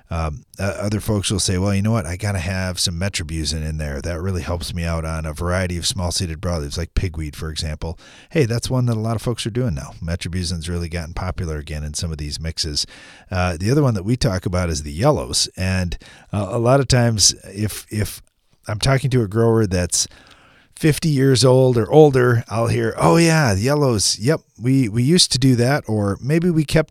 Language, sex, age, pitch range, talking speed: English, male, 40-59, 85-115 Hz, 225 wpm